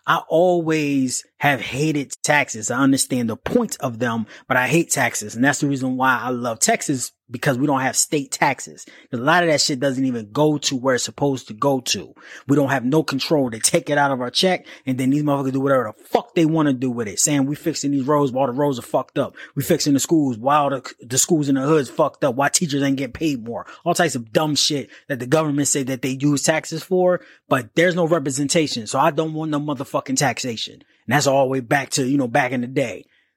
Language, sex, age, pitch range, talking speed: English, male, 20-39, 125-150 Hz, 250 wpm